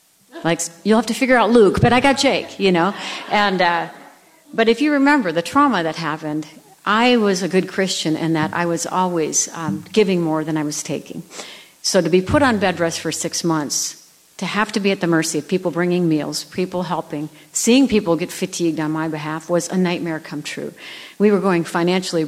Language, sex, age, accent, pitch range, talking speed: English, female, 50-69, American, 160-195 Hz, 215 wpm